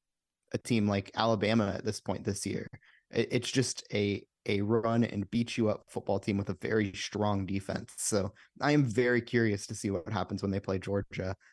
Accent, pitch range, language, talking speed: American, 100-115 Hz, English, 195 wpm